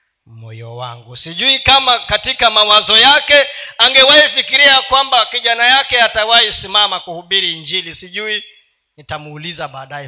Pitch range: 180-275 Hz